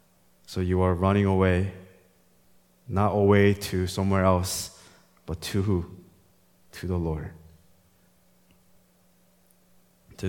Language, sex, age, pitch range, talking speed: English, male, 20-39, 90-100 Hz, 100 wpm